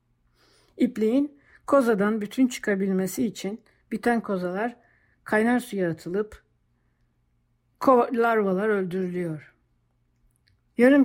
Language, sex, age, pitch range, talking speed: Turkish, female, 60-79, 160-240 Hz, 75 wpm